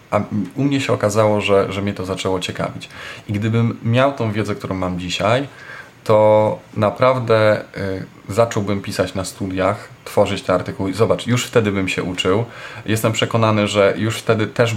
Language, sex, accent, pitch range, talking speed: Polish, male, native, 95-120 Hz, 165 wpm